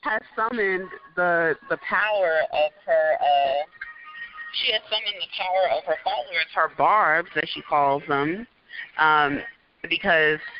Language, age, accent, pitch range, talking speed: English, 30-49, American, 145-190 Hz, 135 wpm